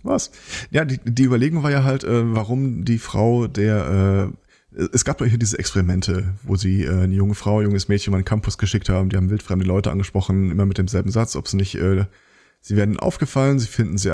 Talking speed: 225 wpm